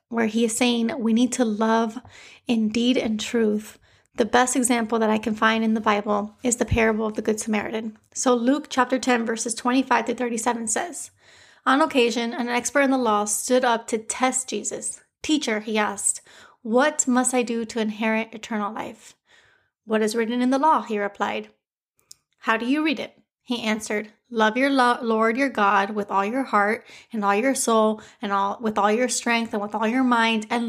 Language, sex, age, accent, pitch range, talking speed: English, female, 30-49, American, 215-250 Hz, 195 wpm